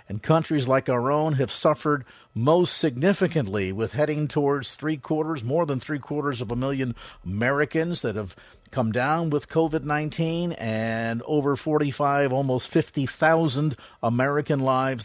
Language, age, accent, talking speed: English, 50-69, American, 130 wpm